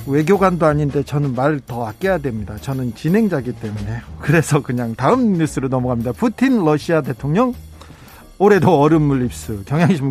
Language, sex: Korean, male